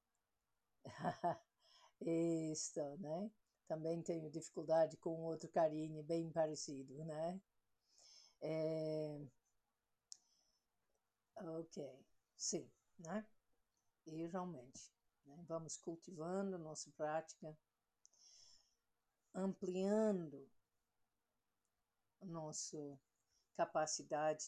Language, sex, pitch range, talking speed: English, female, 145-185 Hz, 65 wpm